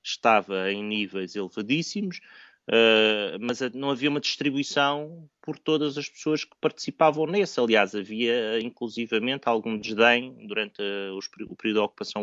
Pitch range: 105-140 Hz